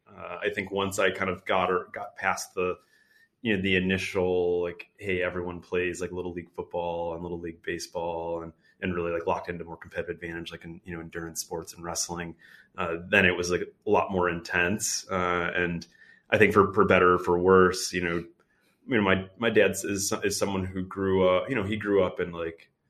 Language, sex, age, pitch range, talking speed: English, male, 30-49, 90-110 Hz, 225 wpm